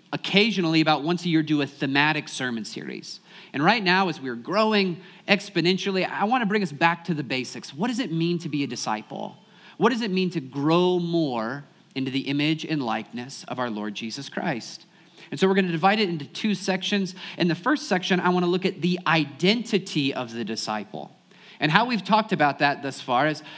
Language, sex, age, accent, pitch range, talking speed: English, male, 30-49, American, 140-190 Hz, 205 wpm